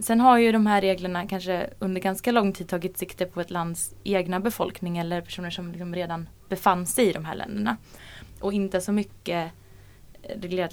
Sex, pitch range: female, 180-215 Hz